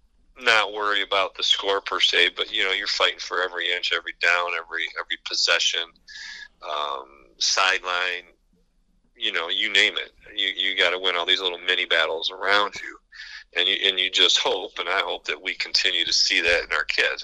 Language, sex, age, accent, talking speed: English, male, 40-59, American, 195 wpm